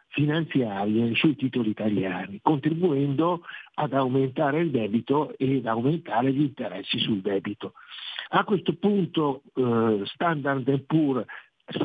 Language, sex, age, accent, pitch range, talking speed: Italian, male, 50-69, native, 125-160 Hz, 110 wpm